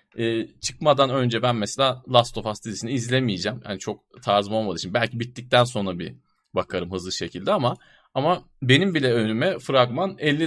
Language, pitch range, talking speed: Turkish, 110-140 Hz, 165 wpm